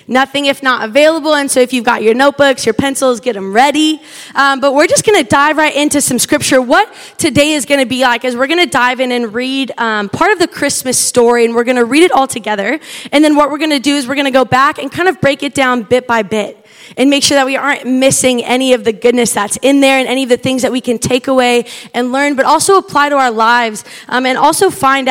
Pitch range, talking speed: 230-275 Hz, 270 wpm